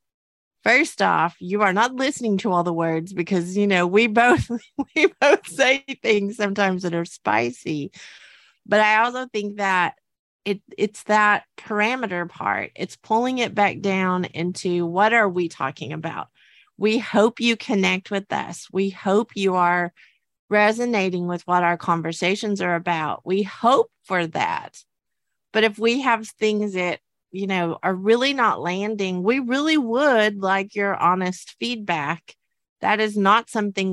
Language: English